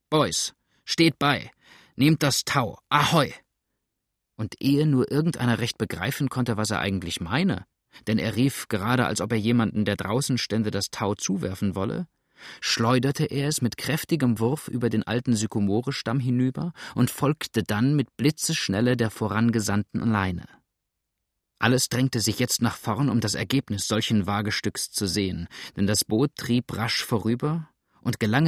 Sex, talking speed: male, 155 wpm